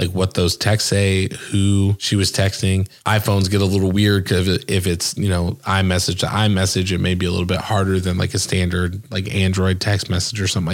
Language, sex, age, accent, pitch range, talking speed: English, male, 20-39, American, 100-130 Hz, 220 wpm